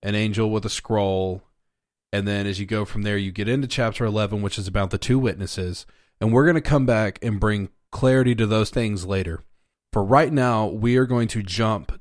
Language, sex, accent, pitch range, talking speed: English, male, American, 100-125 Hz, 220 wpm